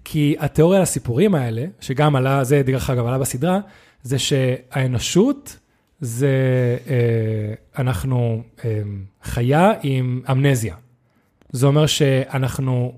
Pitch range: 125-160 Hz